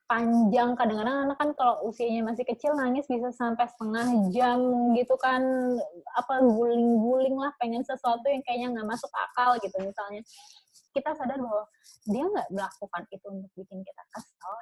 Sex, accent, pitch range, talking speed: female, native, 195-250 Hz, 160 wpm